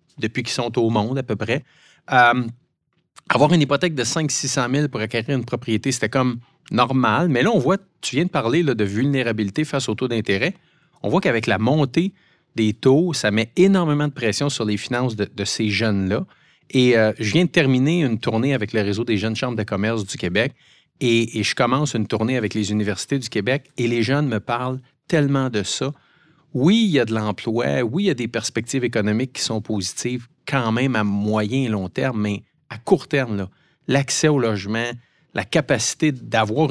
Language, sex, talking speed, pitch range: French, male, 205 wpm, 110-145 Hz